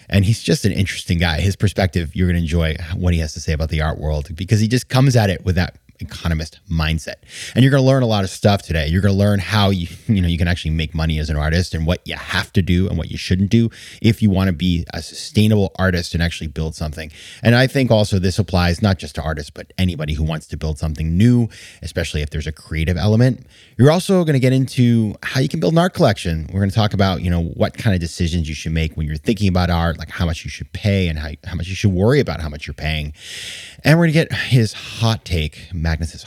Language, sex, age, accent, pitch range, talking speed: English, male, 30-49, American, 85-115 Hz, 270 wpm